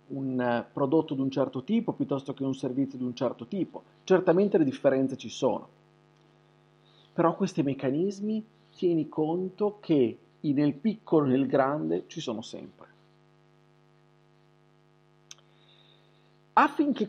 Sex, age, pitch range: male, 40-59, 155-195 Hz